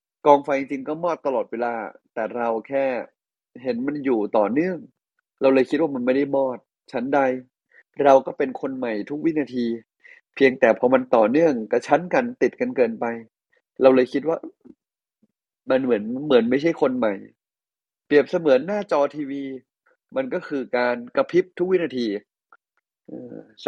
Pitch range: 125-160 Hz